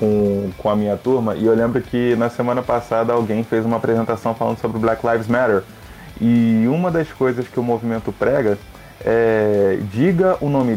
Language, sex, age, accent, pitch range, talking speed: Portuguese, male, 20-39, Brazilian, 100-120 Hz, 190 wpm